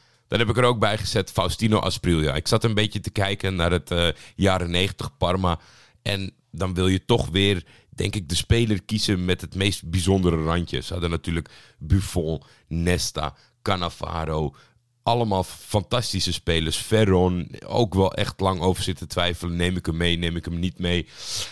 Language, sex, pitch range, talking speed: Dutch, male, 85-110 Hz, 175 wpm